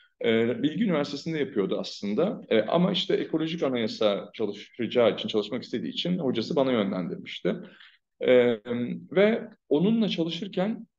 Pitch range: 110-175 Hz